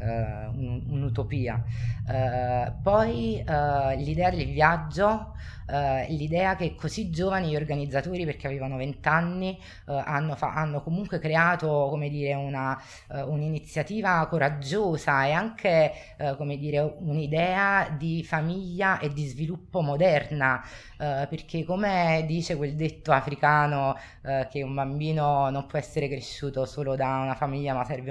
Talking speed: 105 wpm